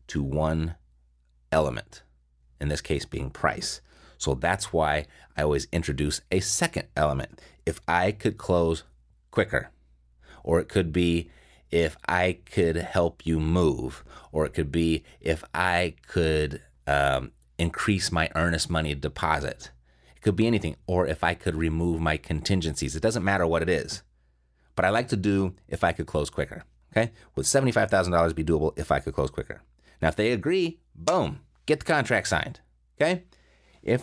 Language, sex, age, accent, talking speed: English, male, 30-49, American, 165 wpm